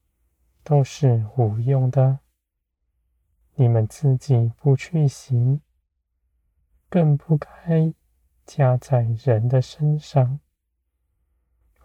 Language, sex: Chinese, male